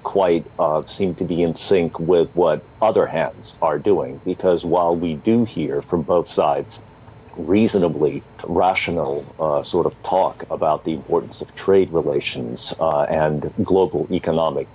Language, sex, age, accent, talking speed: English, male, 50-69, American, 150 wpm